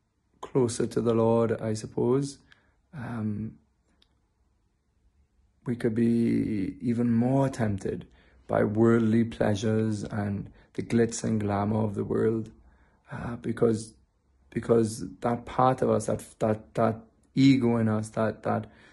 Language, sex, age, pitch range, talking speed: English, male, 20-39, 105-115 Hz, 125 wpm